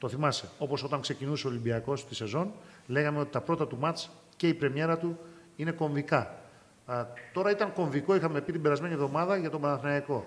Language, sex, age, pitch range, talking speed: Greek, male, 40-59, 130-170 Hz, 195 wpm